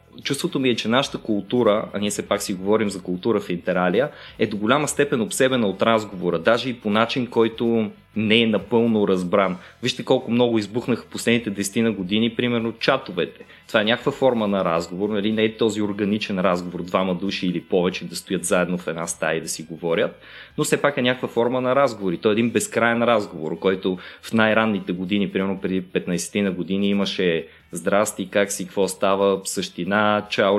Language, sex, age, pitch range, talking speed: Bulgarian, male, 20-39, 95-120 Hz, 195 wpm